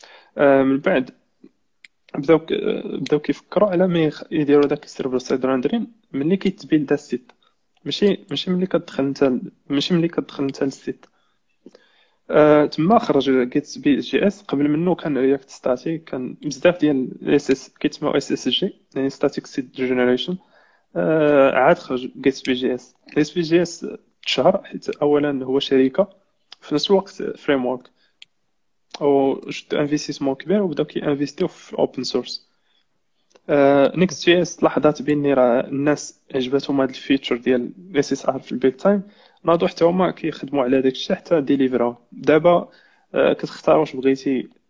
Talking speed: 145 wpm